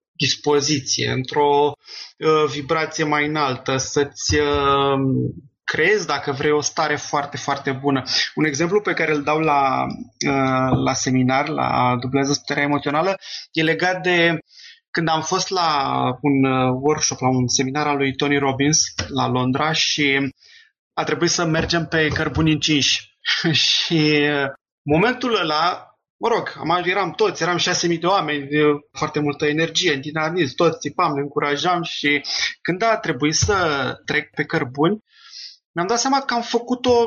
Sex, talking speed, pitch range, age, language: male, 150 wpm, 145-180 Hz, 20-39, Romanian